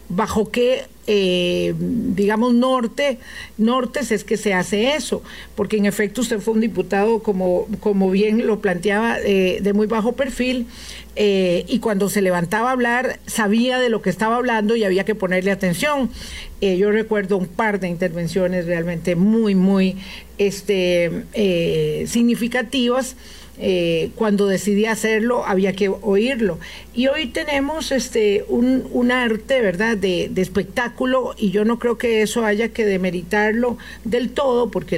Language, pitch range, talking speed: Spanish, 195-240 Hz, 155 wpm